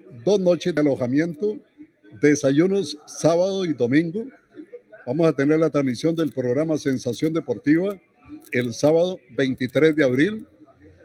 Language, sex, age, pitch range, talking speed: Spanish, male, 60-79, 135-175 Hz, 120 wpm